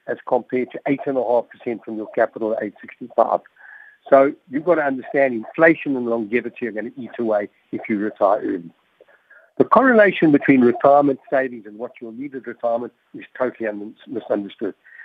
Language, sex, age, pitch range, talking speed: English, male, 50-69, 120-160 Hz, 160 wpm